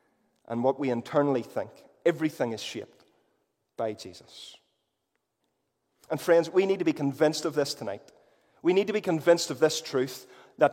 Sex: male